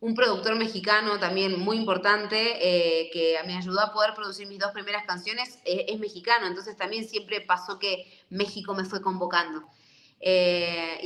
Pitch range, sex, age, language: 180-215 Hz, female, 20-39, English